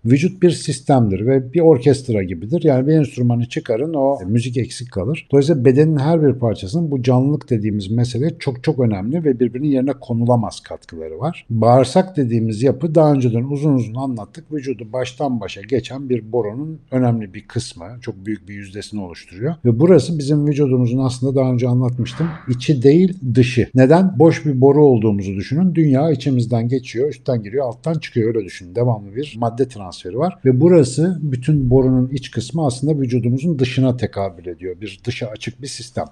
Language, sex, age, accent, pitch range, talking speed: Turkish, male, 60-79, native, 120-150 Hz, 170 wpm